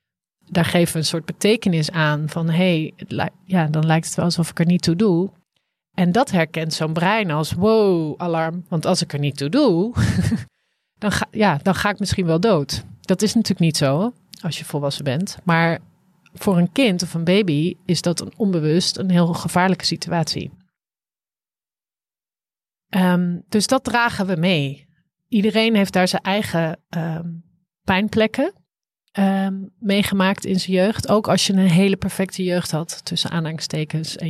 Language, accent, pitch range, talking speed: Dutch, Dutch, 160-185 Hz, 160 wpm